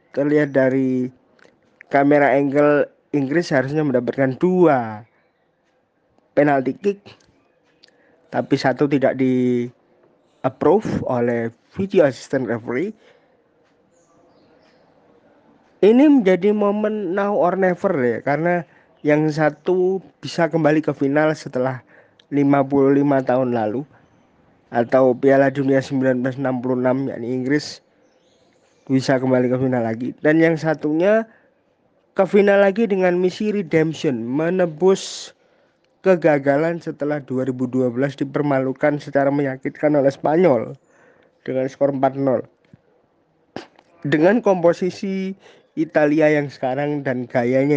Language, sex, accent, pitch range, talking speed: Indonesian, male, native, 130-165 Hz, 95 wpm